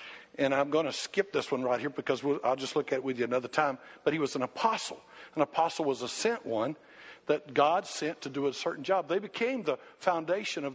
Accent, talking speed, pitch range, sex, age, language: American, 240 wpm, 150-200 Hz, male, 60-79, English